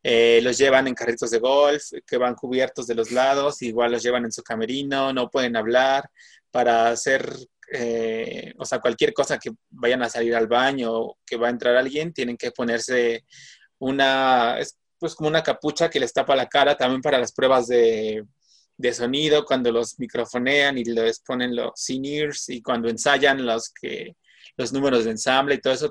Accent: Mexican